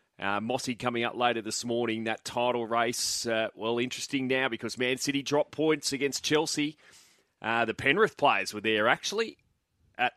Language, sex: English, male